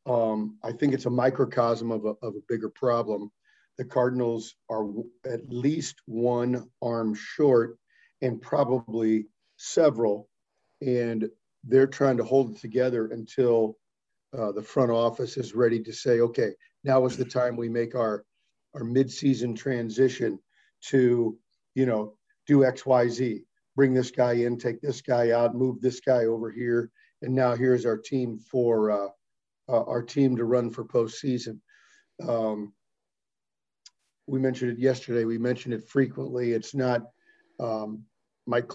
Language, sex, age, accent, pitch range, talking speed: English, male, 50-69, American, 115-130 Hz, 150 wpm